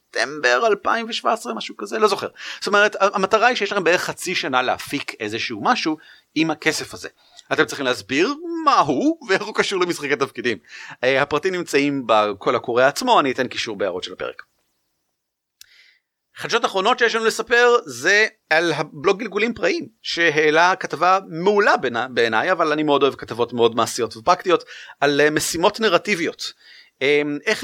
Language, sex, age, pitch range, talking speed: Hebrew, male, 40-59, 135-215 Hz, 150 wpm